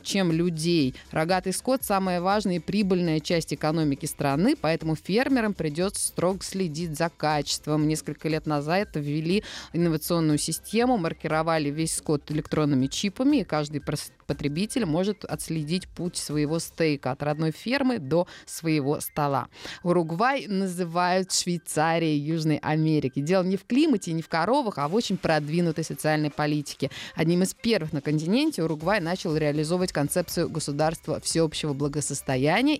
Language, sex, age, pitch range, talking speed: Russian, female, 20-39, 155-195 Hz, 135 wpm